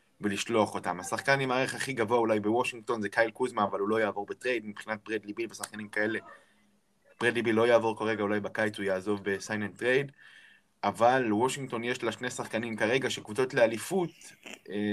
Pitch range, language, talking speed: 110-135 Hz, Hebrew, 170 wpm